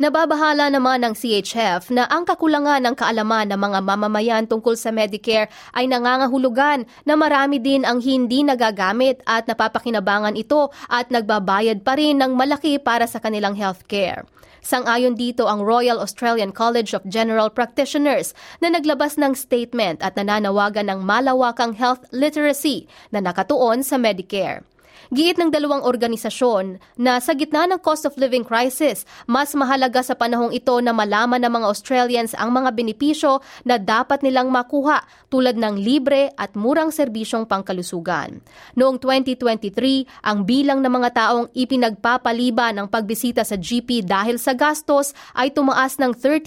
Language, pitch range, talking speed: Filipino, 220-275 Hz, 145 wpm